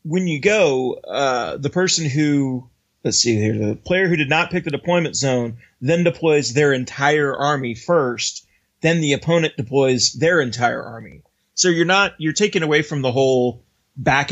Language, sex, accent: English, male, American